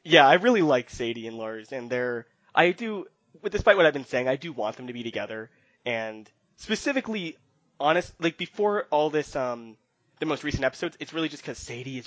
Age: 20-39